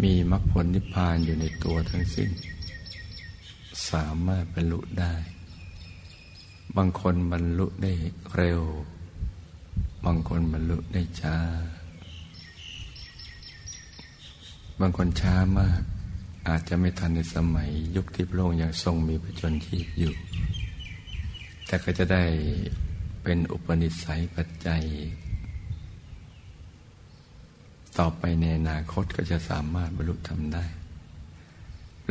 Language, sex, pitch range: Thai, male, 80-90 Hz